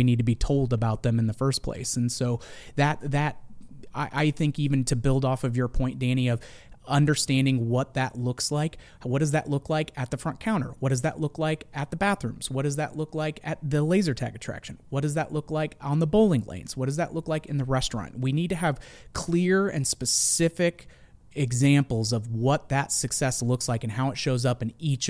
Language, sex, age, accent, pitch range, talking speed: English, male, 30-49, American, 120-145 Hz, 230 wpm